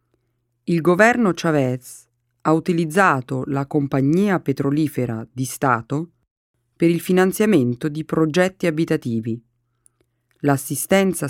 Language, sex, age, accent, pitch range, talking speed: Italian, female, 40-59, native, 120-160 Hz, 90 wpm